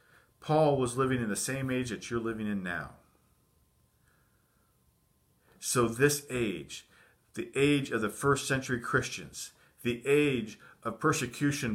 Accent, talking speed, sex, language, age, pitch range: American, 135 wpm, male, English, 50-69, 125-160 Hz